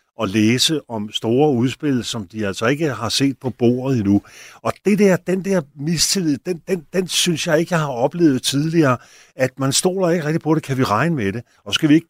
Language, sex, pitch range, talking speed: Danish, male, 105-145 Hz, 230 wpm